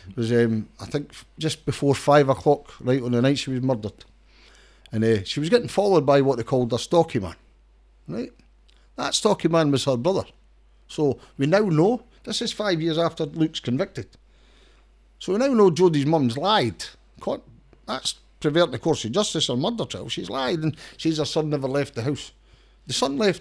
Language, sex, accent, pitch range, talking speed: English, male, British, 120-160 Hz, 195 wpm